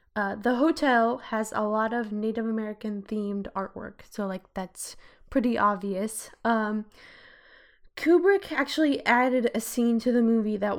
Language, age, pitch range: English, 10-29, 200-230 Hz